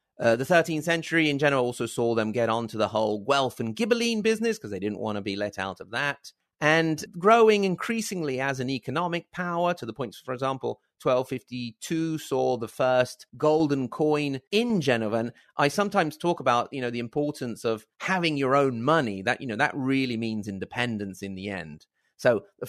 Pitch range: 120-160 Hz